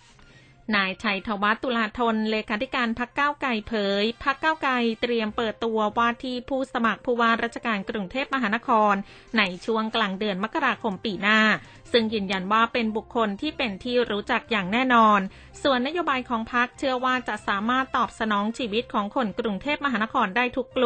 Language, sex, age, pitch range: Thai, female, 20-39, 205-245 Hz